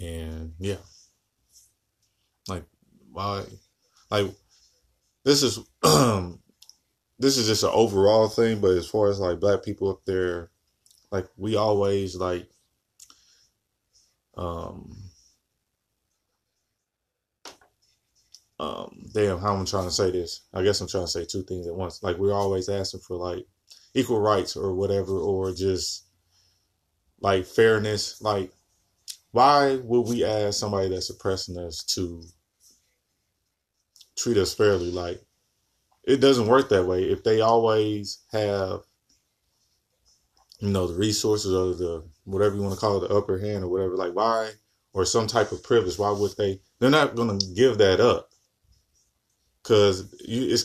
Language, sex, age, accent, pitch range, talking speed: English, male, 20-39, American, 90-105 Hz, 140 wpm